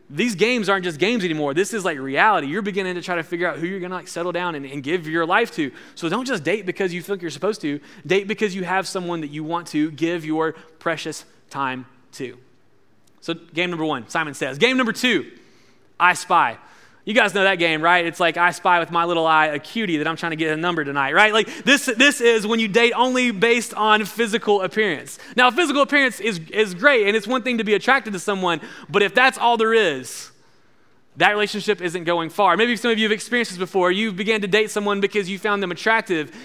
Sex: male